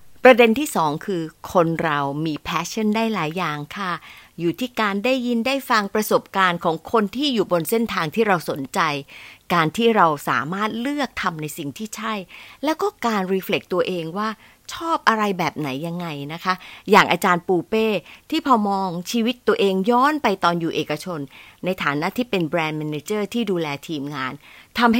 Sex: female